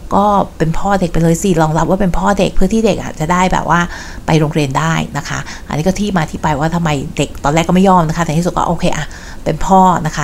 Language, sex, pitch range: Thai, female, 160-195 Hz